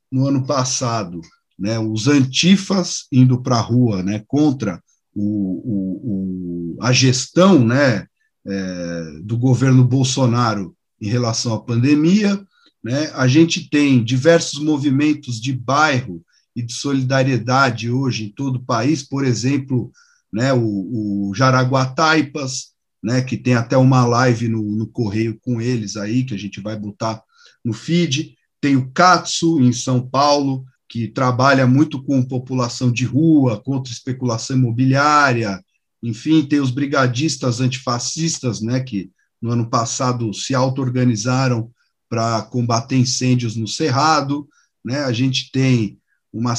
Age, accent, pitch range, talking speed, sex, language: 50-69, Brazilian, 115-145 Hz, 135 wpm, male, Portuguese